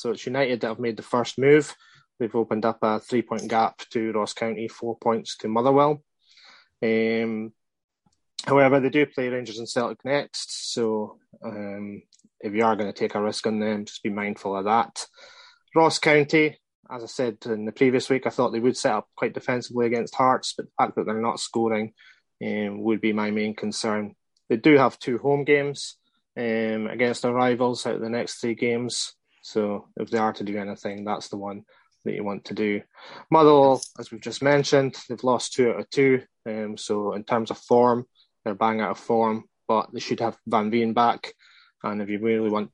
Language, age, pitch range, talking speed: English, 20-39, 110-130 Hz, 205 wpm